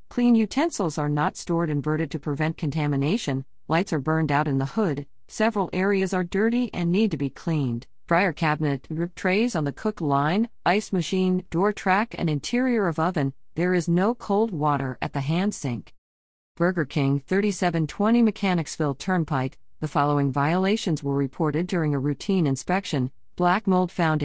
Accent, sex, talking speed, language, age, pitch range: American, female, 170 wpm, English, 40-59, 150-200 Hz